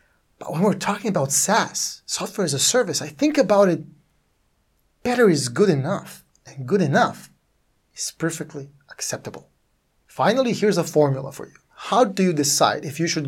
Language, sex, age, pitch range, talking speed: English, male, 30-49, 145-200 Hz, 165 wpm